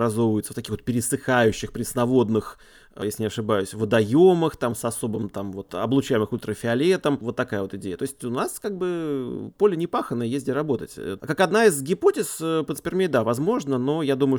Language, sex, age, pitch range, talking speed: Russian, male, 30-49, 110-145 Hz, 175 wpm